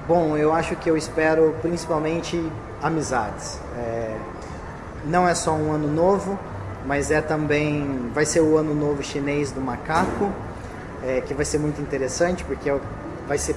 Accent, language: Brazilian, Chinese